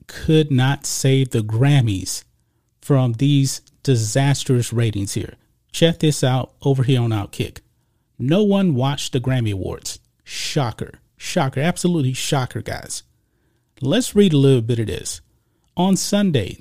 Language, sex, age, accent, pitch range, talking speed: English, male, 40-59, American, 120-160 Hz, 135 wpm